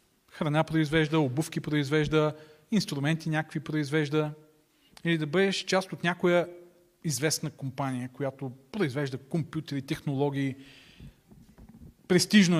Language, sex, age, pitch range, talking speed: Bulgarian, male, 40-59, 145-185 Hz, 95 wpm